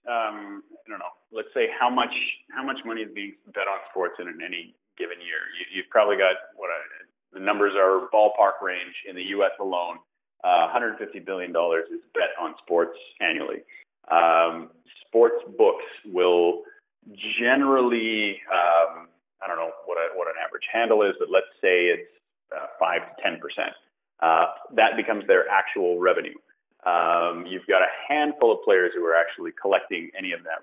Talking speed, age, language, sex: 165 wpm, 30-49, English, male